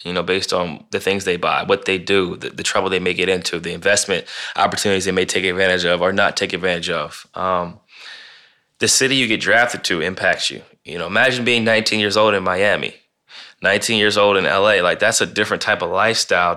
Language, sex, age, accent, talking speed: English, male, 20-39, American, 220 wpm